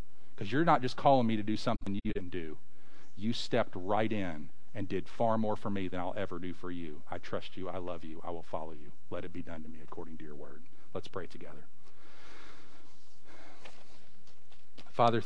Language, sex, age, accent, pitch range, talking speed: English, male, 40-59, American, 95-120 Hz, 205 wpm